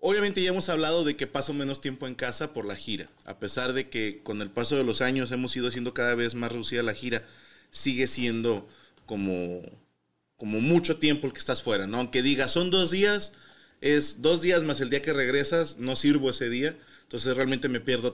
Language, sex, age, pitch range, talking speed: Spanish, male, 30-49, 120-150 Hz, 215 wpm